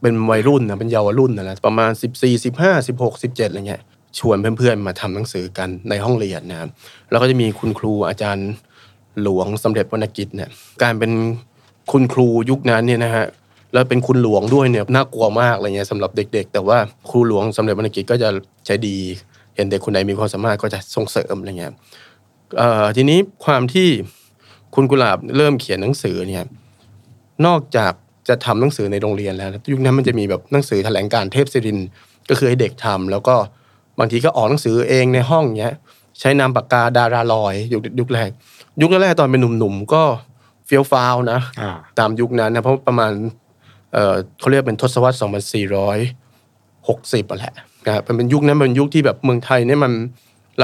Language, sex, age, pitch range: Thai, male, 20-39, 105-125 Hz